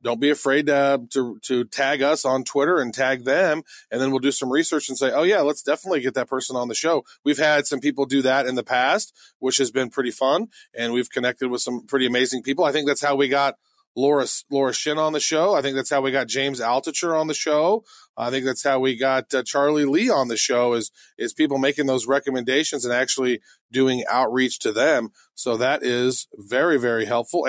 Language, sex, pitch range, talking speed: English, male, 130-150 Hz, 230 wpm